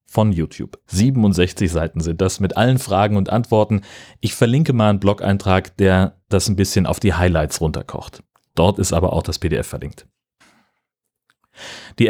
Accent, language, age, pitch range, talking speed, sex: German, German, 30-49, 90-110 Hz, 160 wpm, male